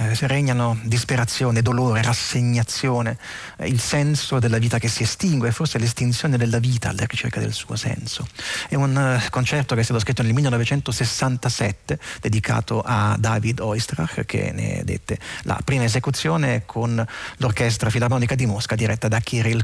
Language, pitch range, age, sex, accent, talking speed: Italian, 115-135 Hz, 30-49, male, native, 155 wpm